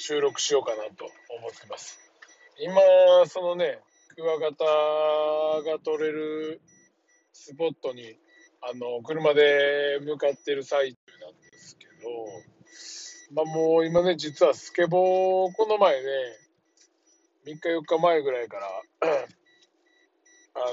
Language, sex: Japanese, male